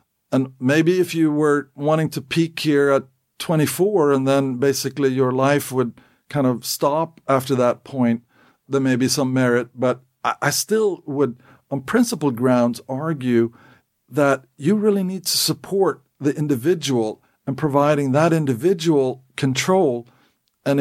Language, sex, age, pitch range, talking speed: English, male, 50-69, 125-155 Hz, 145 wpm